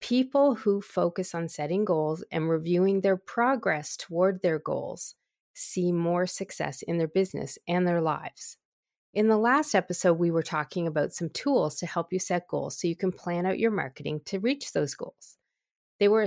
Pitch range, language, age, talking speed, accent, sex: 165-210 Hz, English, 40-59, 185 wpm, American, female